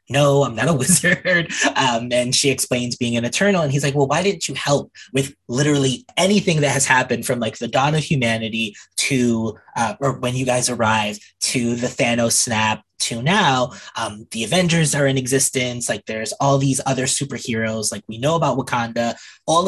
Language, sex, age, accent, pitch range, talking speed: English, male, 20-39, American, 115-145 Hz, 190 wpm